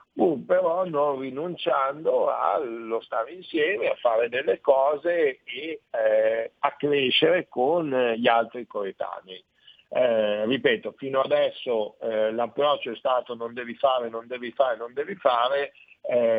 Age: 50-69